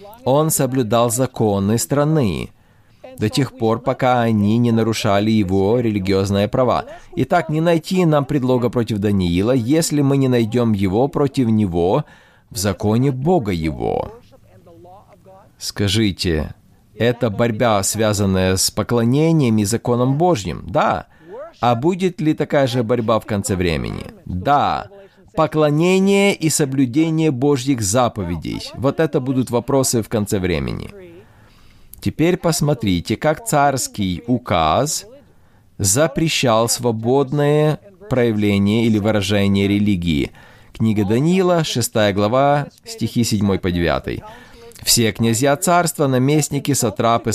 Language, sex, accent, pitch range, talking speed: Russian, male, native, 105-145 Hz, 110 wpm